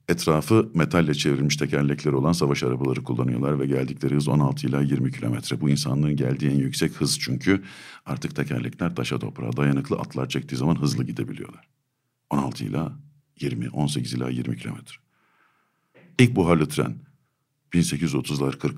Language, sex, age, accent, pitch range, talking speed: Turkish, male, 60-79, native, 75-115 Hz, 135 wpm